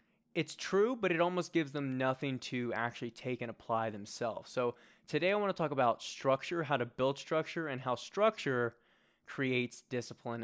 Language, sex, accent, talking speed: English, male, American, 180 wpm